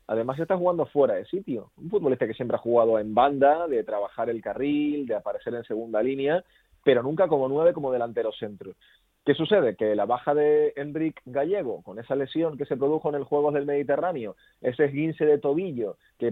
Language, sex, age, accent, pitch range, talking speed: Spanish, male, 30-49, Spanish, 125-150 Hz, 200 wpm